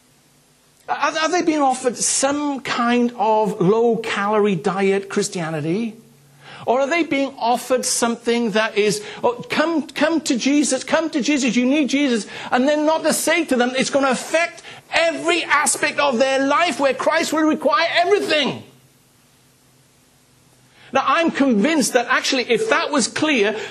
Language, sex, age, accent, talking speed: English, male, 50-69, British, 150 wpm